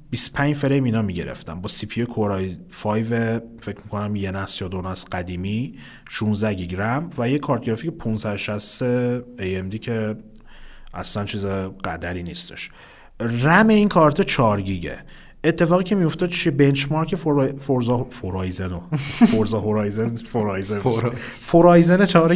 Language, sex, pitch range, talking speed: Persian, male, 100-145 Hz, 135 wpm